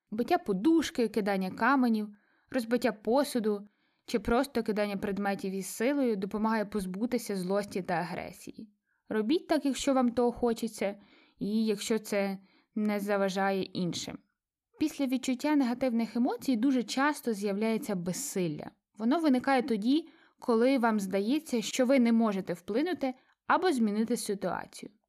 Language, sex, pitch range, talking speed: Ukrainian, female, 210-270 Hz, 120 wpm